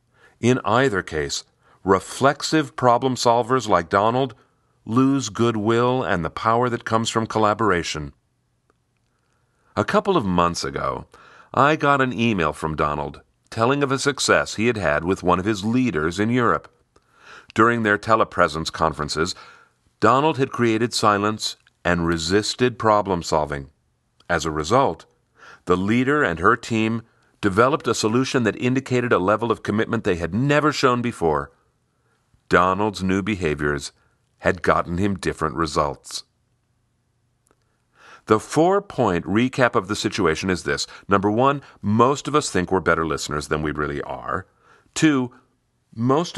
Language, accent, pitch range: English, American, 85-125 Hz